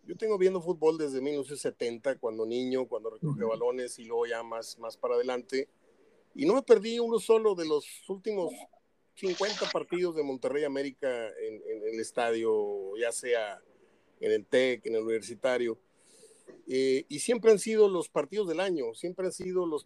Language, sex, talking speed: Spanish, male, 170 wpm